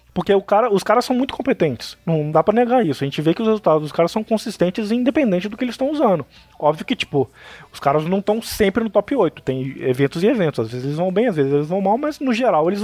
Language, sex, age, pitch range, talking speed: Portuguese, male, 20-39, 160-215 Hz, 260 wpm